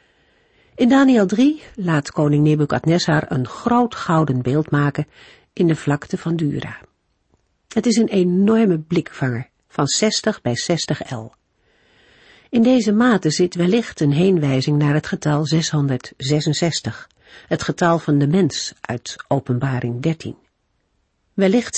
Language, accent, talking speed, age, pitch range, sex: Dutch, Dutch, 125 wpm, 50-69, 140-195 Hz, female